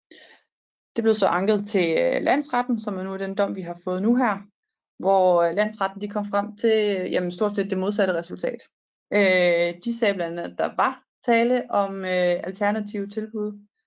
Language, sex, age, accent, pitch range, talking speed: Danish, female, 20-39, native, 180-225 Hz, 190 wpm